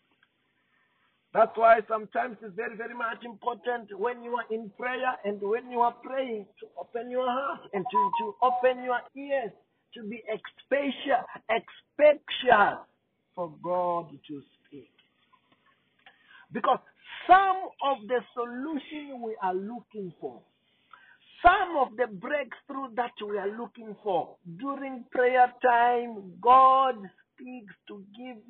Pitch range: 220-270 Hz